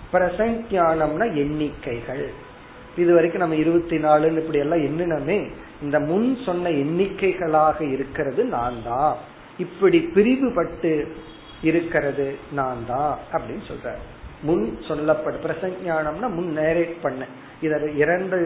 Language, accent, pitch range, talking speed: Tamil, native, 145-175 Hz, 50 wpm